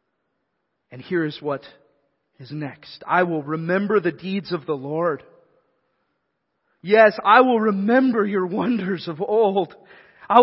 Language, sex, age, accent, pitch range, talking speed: English, male, 40-59, American, 165-220 Hz, 130 wpm